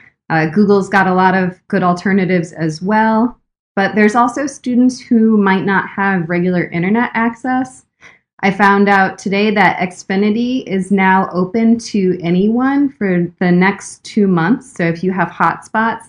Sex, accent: female, American